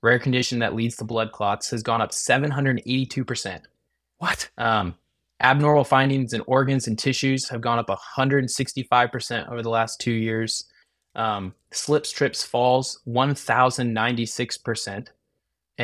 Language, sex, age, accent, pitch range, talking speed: English, male, 20-39, American, 115-130 Hz, 125 wpm